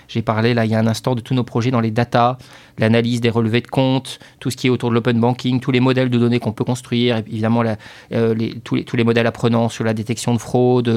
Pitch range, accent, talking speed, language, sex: 115-135 Hz, French, 280 wpm, French, male